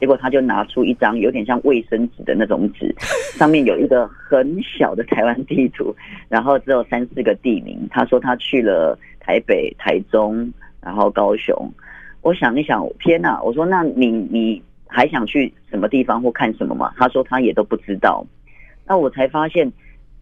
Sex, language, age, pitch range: female, Chinese, 30-49, 110-145 Hz